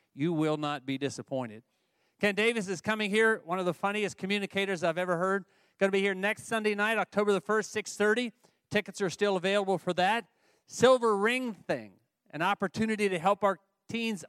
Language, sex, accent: English, male, American